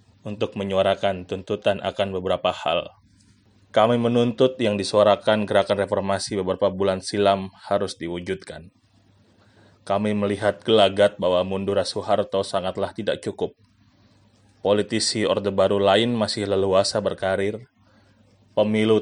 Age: 20-39